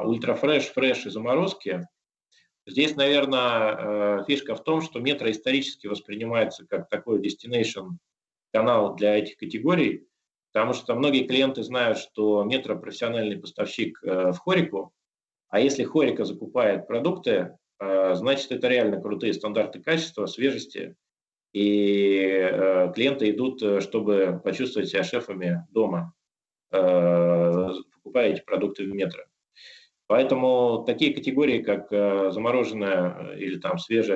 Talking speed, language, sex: 110 wpm, Russian, male